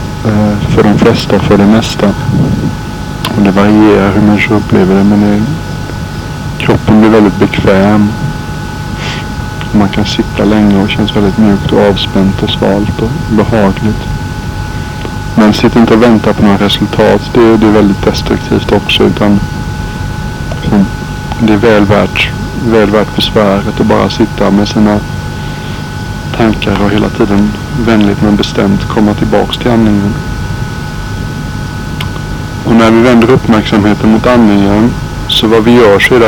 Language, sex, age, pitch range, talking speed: Swedish, male, 60-79, 105-115 Hz, 135 wpm